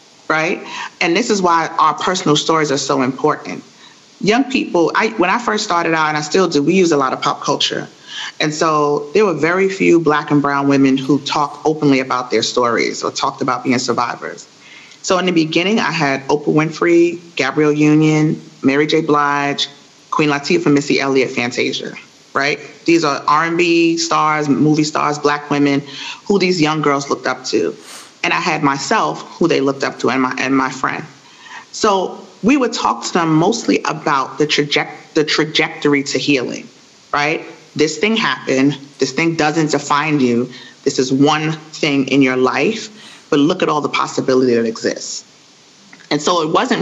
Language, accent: English, American